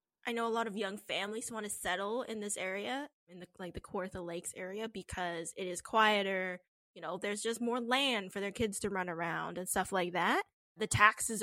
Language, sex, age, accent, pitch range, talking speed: English, female, 10-29, American, 180-225 Hz, 220 wpm